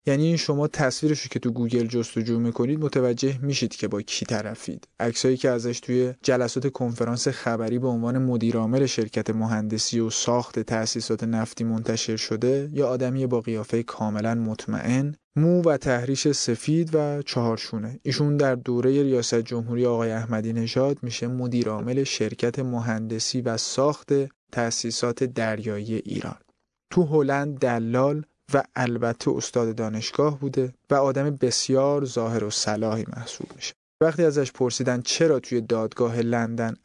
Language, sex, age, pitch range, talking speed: Persian, male, 20-39, 115-140 Hz, 140 wpm